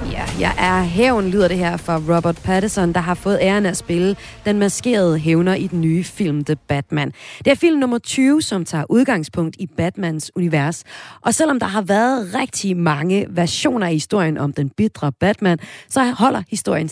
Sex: female